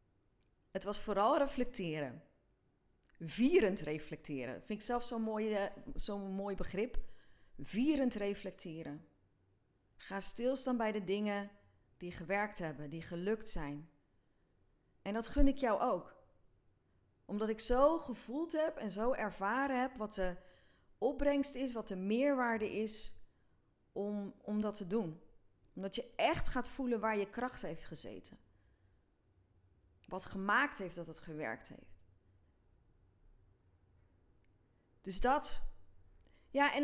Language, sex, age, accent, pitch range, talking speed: Dutch, female, 30-49, Dutch, 150-250 Hz, 125 wpm